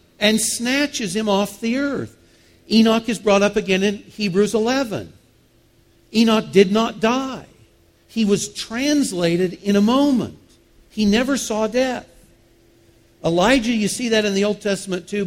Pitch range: 160-230 Hz